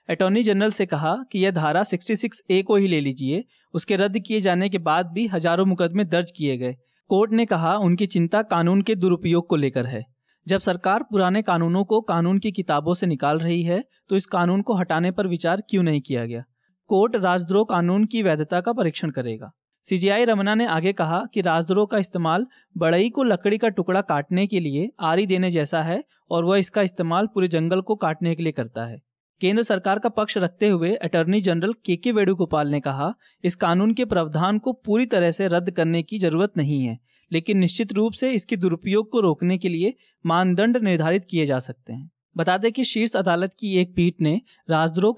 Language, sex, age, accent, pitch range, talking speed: Hindi, male, 20-39, native, 165-205 Hz, 200 wpm